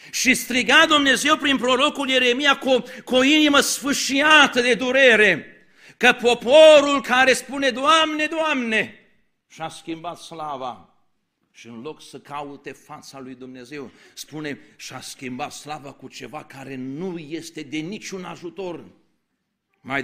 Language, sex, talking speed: Romanian, male, 130 wpm